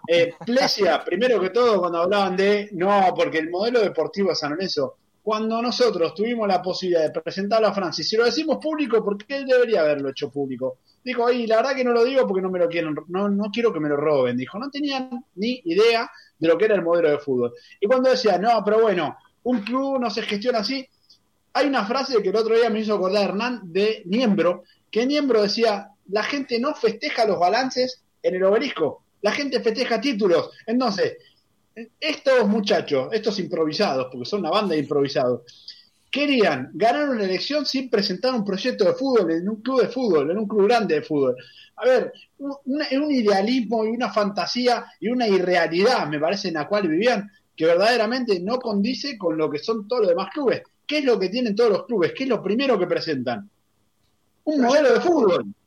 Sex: male